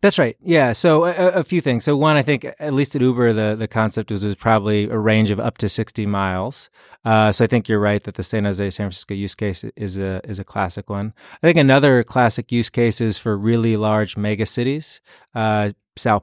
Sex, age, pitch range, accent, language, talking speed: male, 20-39, 105-125 Hz, American, English, 235 wpm